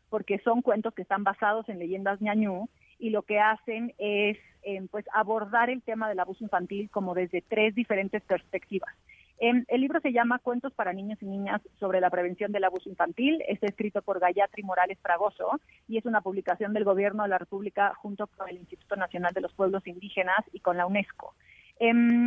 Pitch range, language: 190-225 Hz, Spanish